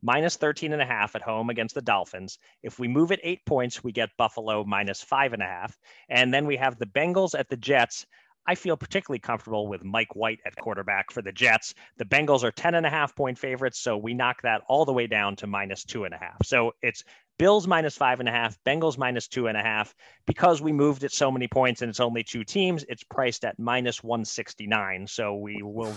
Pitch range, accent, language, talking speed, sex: 115-150 Hz, American, English, 245 wpm, male